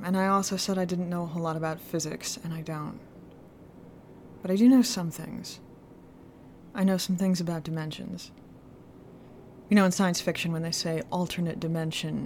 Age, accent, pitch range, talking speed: 20-39, American, 160-195 Hz, 180 wpm